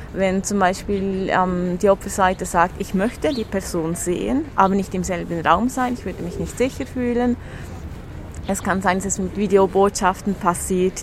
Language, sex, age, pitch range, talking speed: French, female, 30-49, 180-210 Hz, 175 wpm